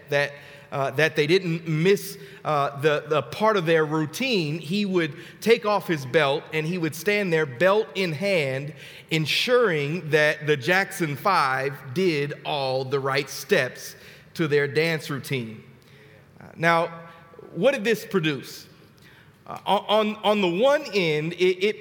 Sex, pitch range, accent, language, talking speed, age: male, 150-195 Hz, American, English, 150 wpm, 40-59